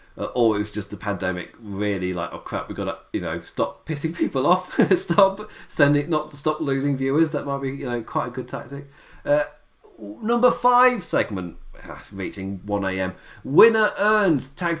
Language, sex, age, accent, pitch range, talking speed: English, male, 30-49, British, 110-165 Hz, 185 wpm